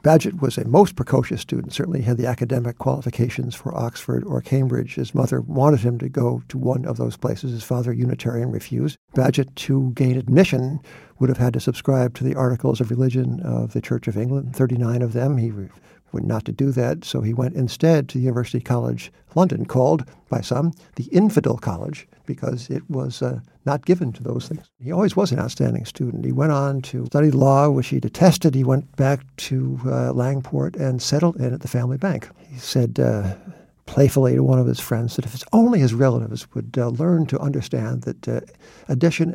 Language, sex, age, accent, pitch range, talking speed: English, male, 60-79, American, 120-145 Hz, 200 wpm